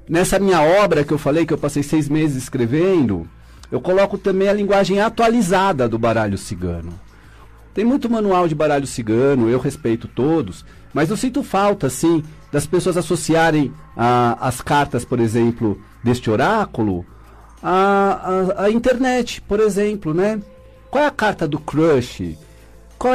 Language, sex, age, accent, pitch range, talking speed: Portuguese, male, 50-69, Brazilian, 130-195 Hz, 155 wpm